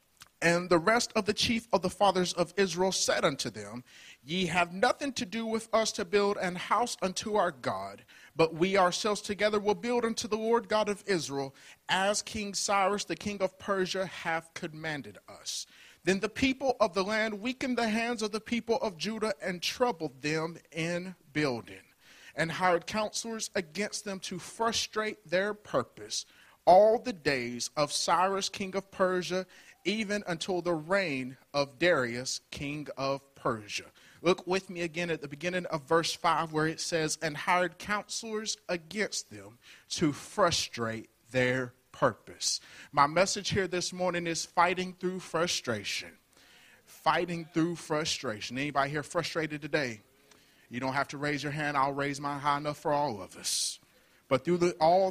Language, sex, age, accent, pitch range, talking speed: English, male, 40-59, American, 145-205 Hz, 165 wpm